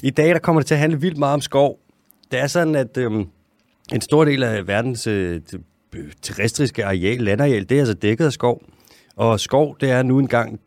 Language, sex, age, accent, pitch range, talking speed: Danish, male, 30-49, native, 100-135 Hz, 215 wpm